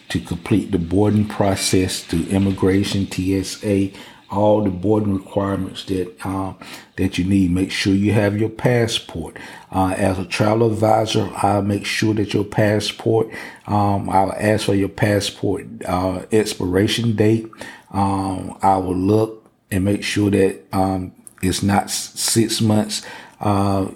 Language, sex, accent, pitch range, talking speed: English, male, American, 95-105 Hz, 145 wpm